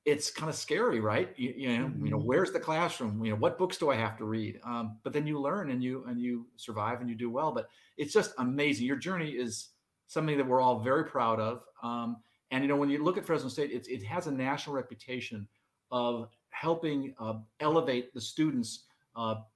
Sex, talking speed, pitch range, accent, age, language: male, 225 wpm, 115-140 Hz, American, 40-59, English